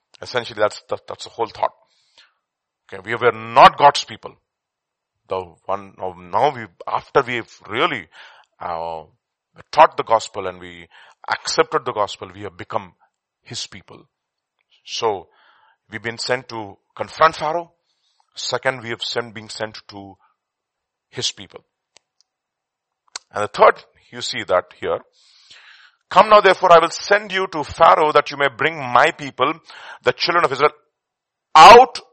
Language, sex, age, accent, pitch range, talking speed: English, male, 40-59, Indian, 130-170 Hz, 145 wpm